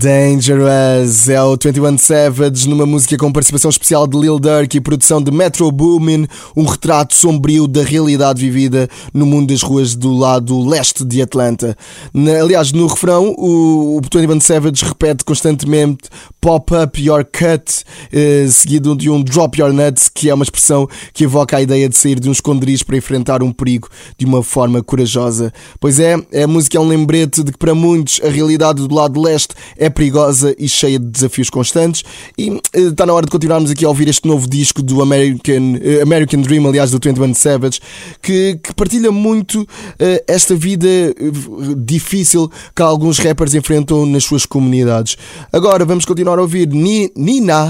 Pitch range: 140-160 Hz